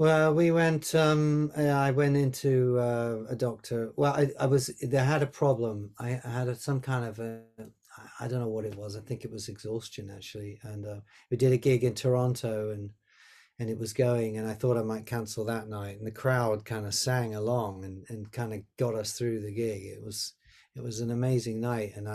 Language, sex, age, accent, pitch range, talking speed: English, male, 40-59, British, 110-135 Hz, 220 wpm